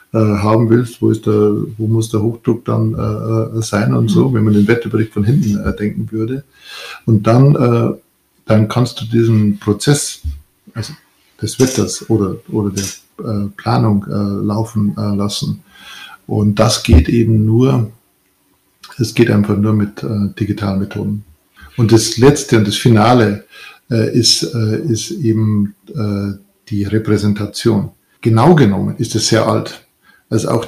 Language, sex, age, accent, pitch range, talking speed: German, male, 50-69, German, 105-120 Hz, 155 wpm